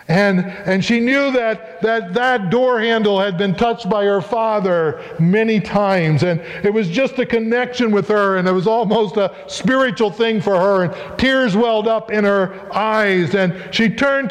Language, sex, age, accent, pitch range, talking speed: English, male, 50-69, American, 155-215 Hz, 185 wpm